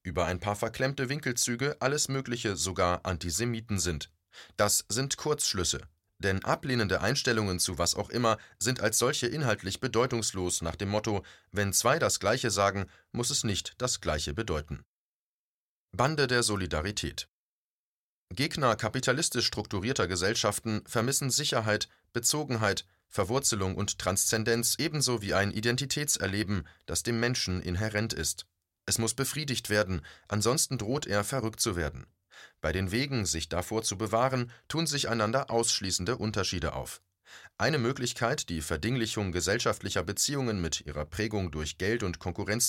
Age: 30-49